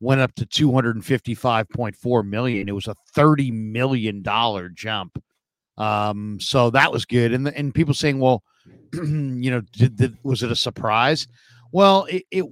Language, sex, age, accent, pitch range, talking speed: English, male, 50-69, American, 115-140 Hz, 180 wpm